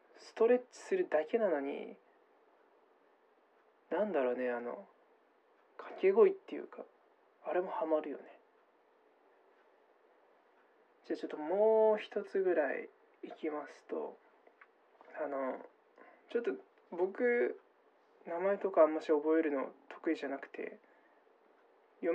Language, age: Japanese, 20-39